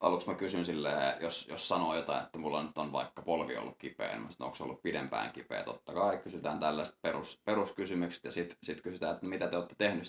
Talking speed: 225 wpm